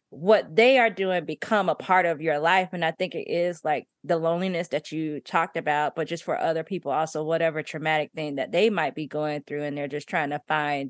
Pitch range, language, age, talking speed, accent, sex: 165-225 Hz, English, 20-39, 235 wpm, American, female